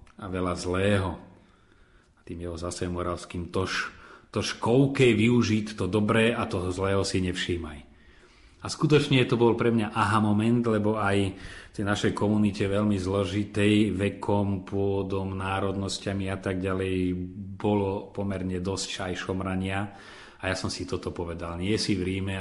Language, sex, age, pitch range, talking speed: Slovak, male, 30-49, 90-105 Hz, 145 wpm